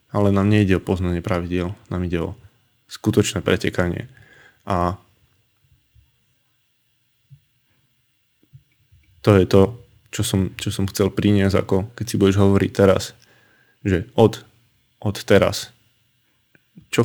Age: 20-39